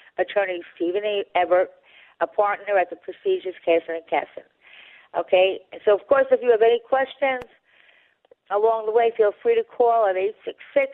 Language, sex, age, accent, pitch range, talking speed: English, female, 50-69, American, 175-235 Hz, 160 wpm